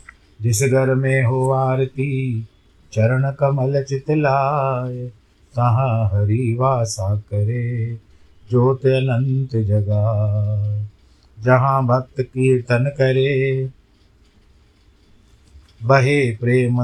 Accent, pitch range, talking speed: native, 105-130 Hz, 75 wpm